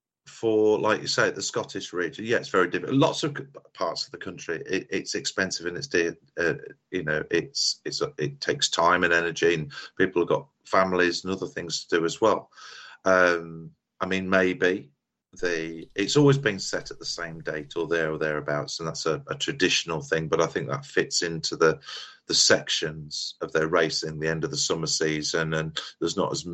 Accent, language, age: British, English, 40-59